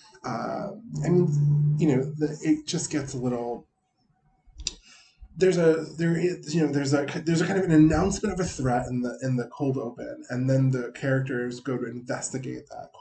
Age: 20-39